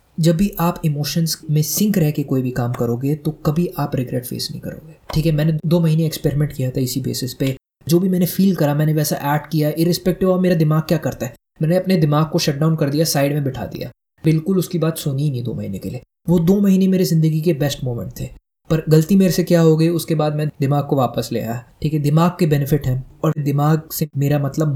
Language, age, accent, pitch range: Hindi, 20-39, native, 135-165 Hz